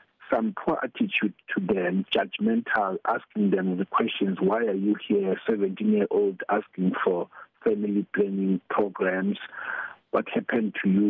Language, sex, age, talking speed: English, male, 50-69, 130 wpm